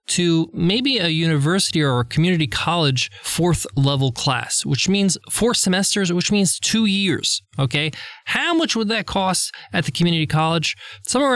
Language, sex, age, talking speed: English, male, 20-39, 155 wpm